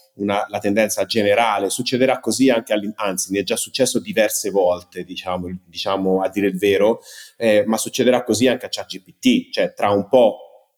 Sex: male